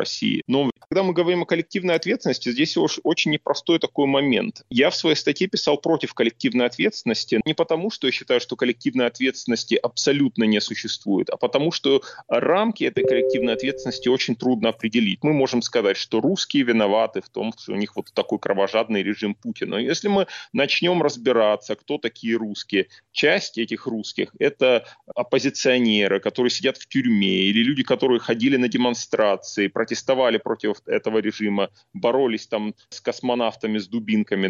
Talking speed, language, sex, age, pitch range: 160 wpm, Russian, male, 30-49, 110-155 Hz